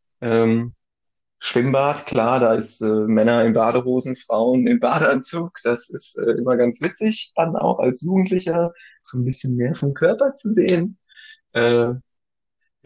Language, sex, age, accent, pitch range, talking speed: German, male, 30-49, German, 115-155 Hz, 145 wpm